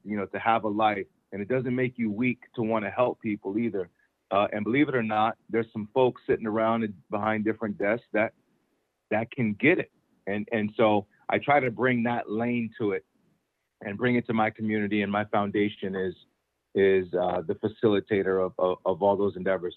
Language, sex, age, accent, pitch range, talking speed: English, male, 40-59, American, 100-115 Hz, 205 wpm